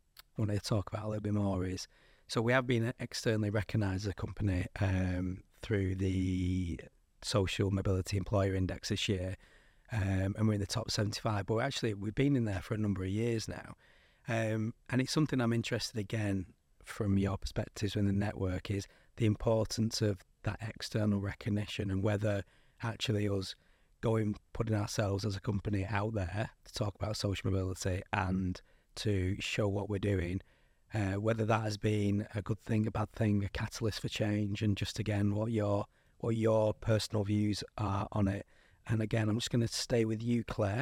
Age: 30-49